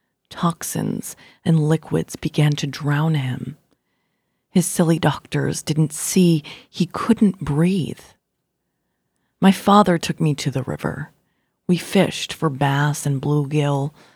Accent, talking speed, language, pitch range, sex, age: American, 120 wpm, English, 145-180 Hz, female, 30-49